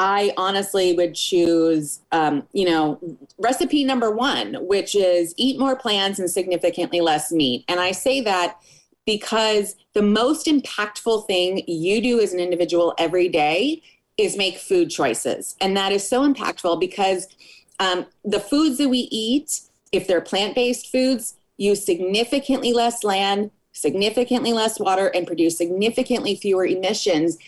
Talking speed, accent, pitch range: 150 wpm, American, 175-235 Hz